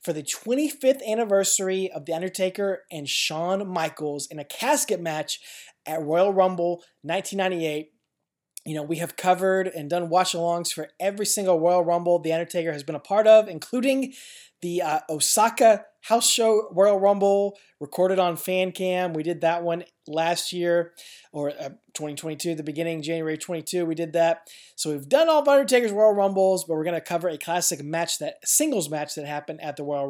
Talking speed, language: 180 wpm, English